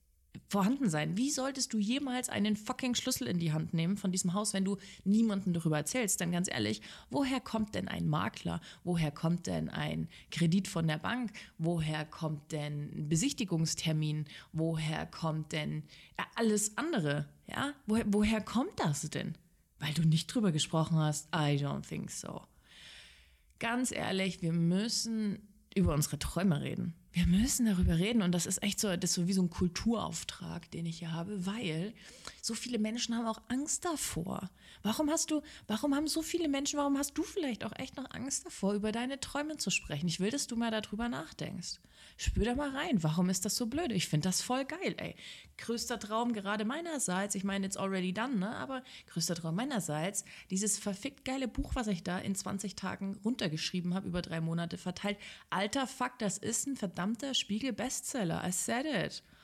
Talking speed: 185 wpm